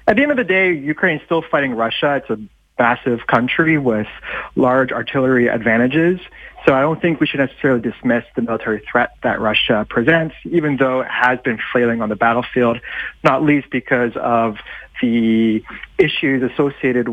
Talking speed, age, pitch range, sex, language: 170 wpm, 30-49, 125-160 Hz, male, English